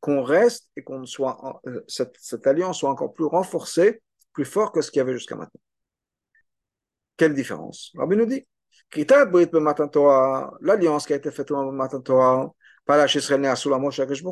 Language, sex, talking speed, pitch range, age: French, male, 160 wpm, 135-195 Hz, 50-69